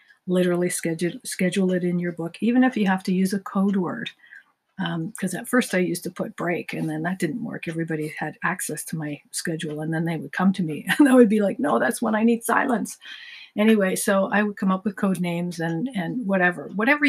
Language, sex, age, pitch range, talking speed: English, female, 50-69, 175-205 Hz, 235 wpm